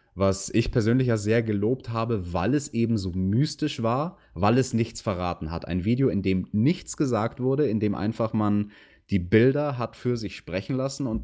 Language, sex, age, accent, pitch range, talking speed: German, male, 30-49, German, 95-130 Hz, 200 wpm